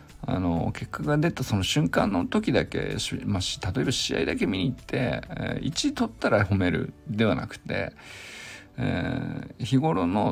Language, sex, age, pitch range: Japanese, male, 50-69, 100-130 Hz